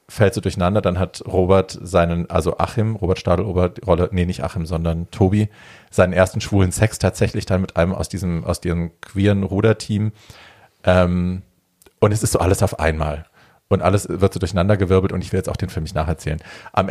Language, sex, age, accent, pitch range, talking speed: German, male, 40-59, German, 90-105 Hz, 190 wpm